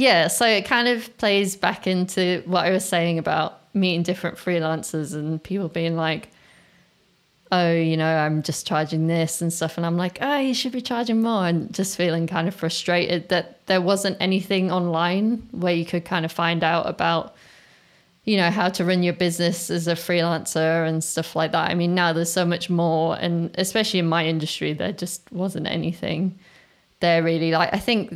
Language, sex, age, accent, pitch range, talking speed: English, female, 20-39, British, 165-190 Hz, 195 wpm